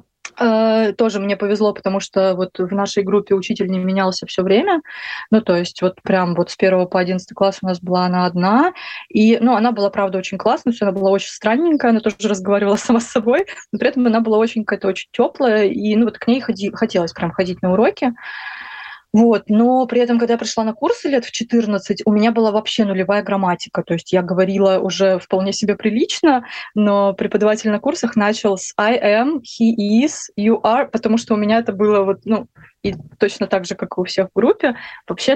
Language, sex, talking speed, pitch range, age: Russian, female, 210 wpm, 190-230 Hz, 20-39